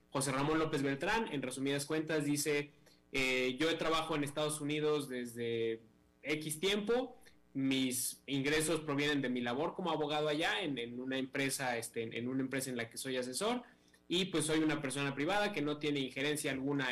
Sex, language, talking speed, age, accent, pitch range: male, Spanish, 180 wpm, 20-39, Mexican, 130-160 Hz